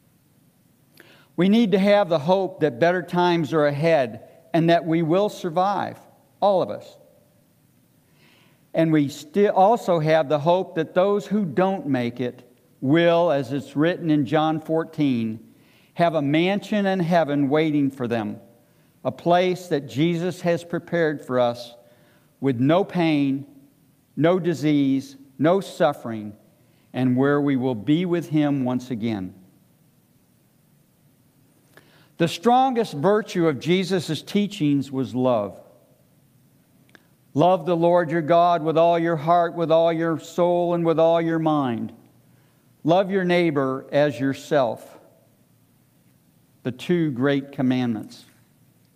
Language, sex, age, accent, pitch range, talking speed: English, male, 60-79, American, 135-175 Hz, 130 wpm